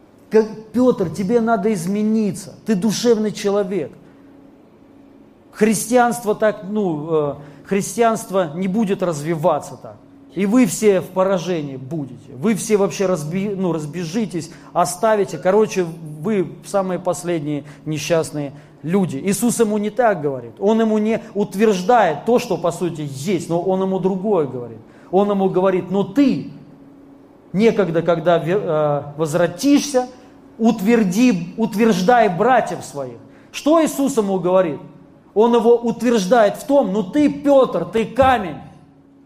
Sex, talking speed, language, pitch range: male, 120 wpm, Russian, 175-230 Hz